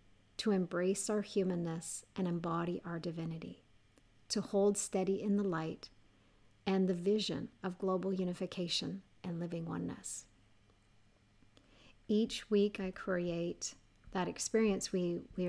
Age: 40-59